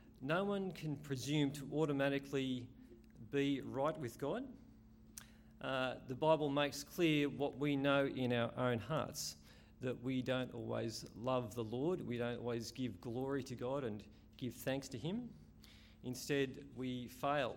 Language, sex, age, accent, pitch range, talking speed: English, male, 40-59, Australian, 115-140 Hz, 150 wpm